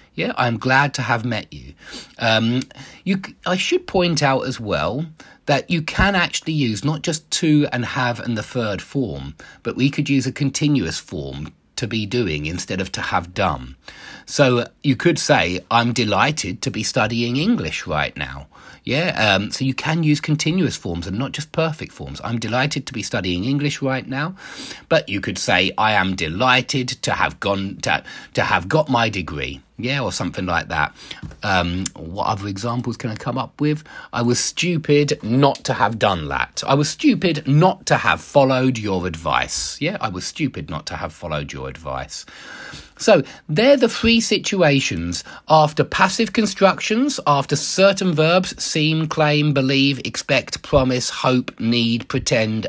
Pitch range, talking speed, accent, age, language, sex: 110-155 Hz, 175 wpm, British, 30-49, English, male